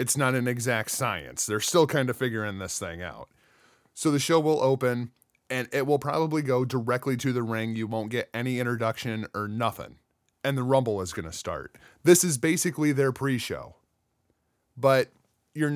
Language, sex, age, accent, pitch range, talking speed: English, male, 30-49, American, 110-135 Hz, 185 wpm